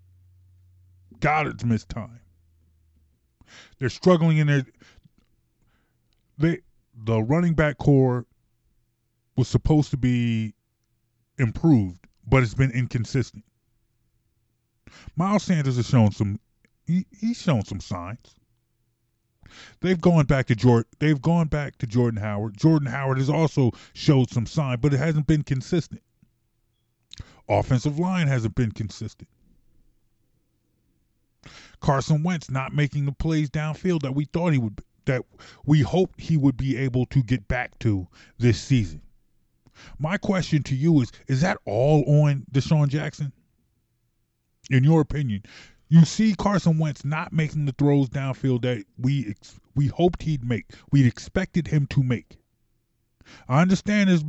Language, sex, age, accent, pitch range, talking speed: English, male, 20-39, American, 115-155 Hz, 135 wpm